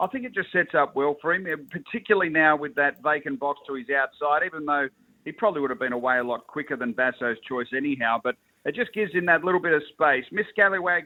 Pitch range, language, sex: 140-175 Hz, English, male